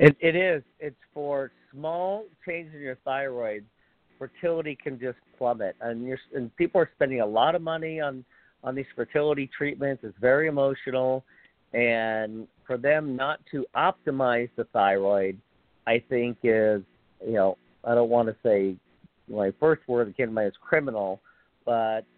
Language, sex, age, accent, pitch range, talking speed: English, male, 50-69, American, 115-140 Hz, 160 wpm